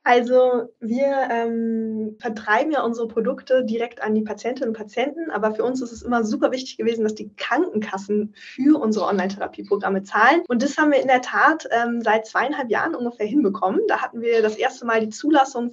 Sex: female